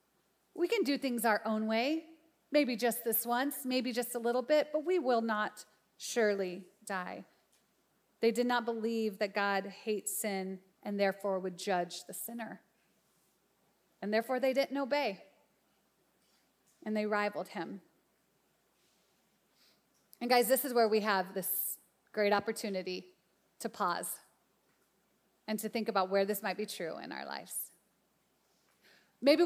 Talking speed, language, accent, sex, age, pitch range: 145 wpm, English, American, female, 30-49, 195-245 Hz